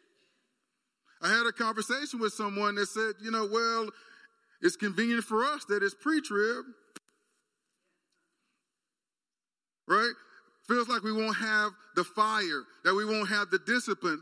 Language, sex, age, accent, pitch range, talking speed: English, male, 40-59, American, 210-275 Hz, 135 wpm